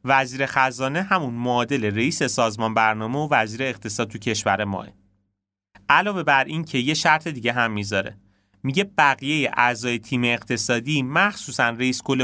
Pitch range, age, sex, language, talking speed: 105-135 Hz, 30-49, male, Persian, 140 wpm